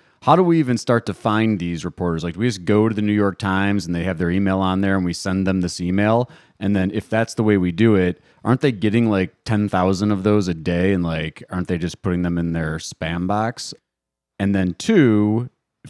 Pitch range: 85-105 Hz